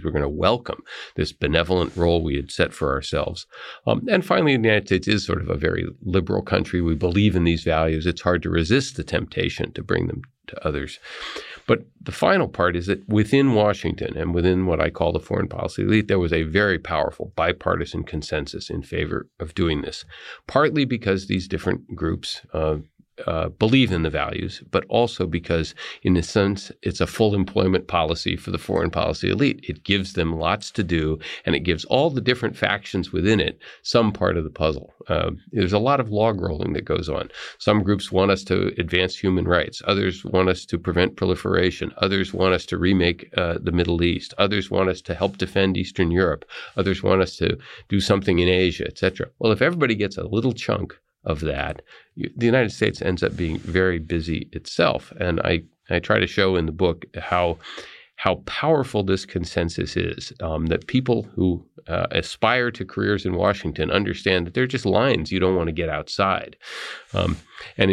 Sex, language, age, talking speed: male, English, 40-59, 195 wpm